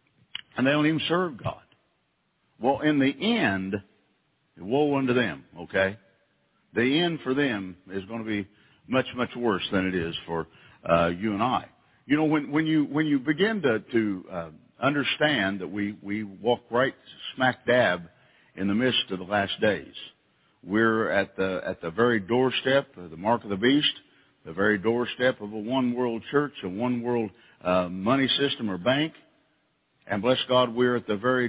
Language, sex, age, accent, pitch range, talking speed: English, male, 60-79, American, 100-130 Hz, 175 wpm